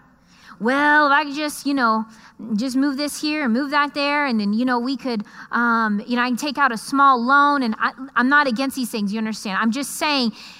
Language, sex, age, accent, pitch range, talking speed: English, female, 30-49, American, 230-340 Hz, 240 wpm